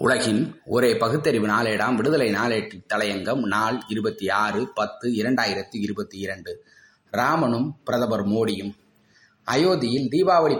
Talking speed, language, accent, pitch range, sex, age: 110 wpm, Tamil, native, 120-155 Hz, male, 20-39